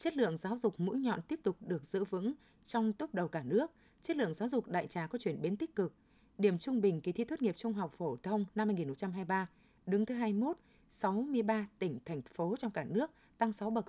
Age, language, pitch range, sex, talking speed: 20-39, Vietnamese, 180-230 Hz, female, 230 wpm